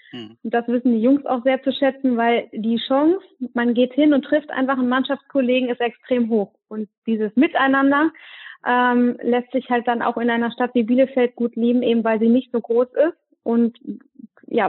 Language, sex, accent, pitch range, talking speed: German, female, German, 220-245 Hz, 195 wpm